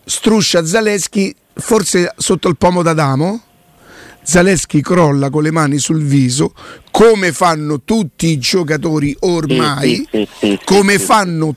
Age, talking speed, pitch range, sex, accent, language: 50-69, 115 wpm, 160-215 Hz, male, native, Italian